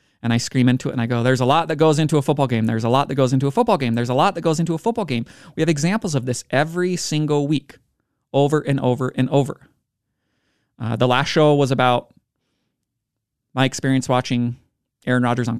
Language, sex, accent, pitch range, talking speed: English, male, American, 125-150 Hz, 230 wpm